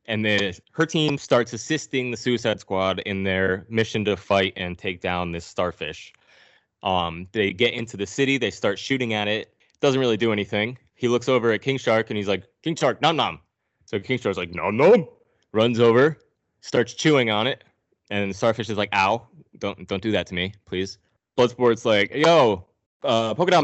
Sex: male